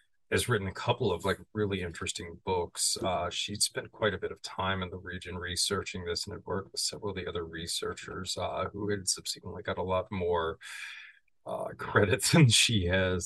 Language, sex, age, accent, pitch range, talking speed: English, male, 30-49, American, 95-105 Hz, 200 wpm